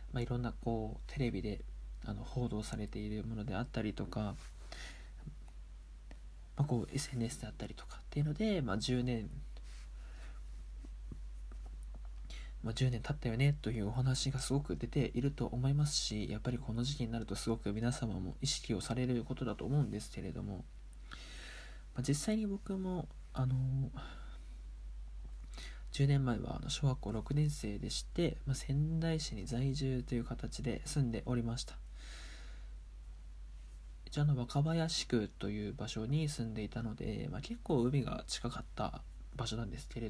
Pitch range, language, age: 85-135 Hz, Japanese, 20-39